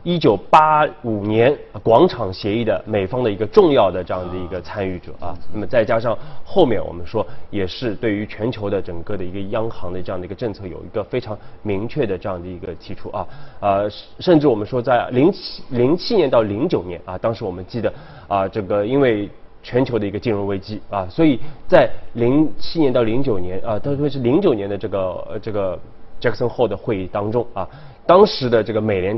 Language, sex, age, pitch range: Chinese, male, 20-39, 95-125 Hz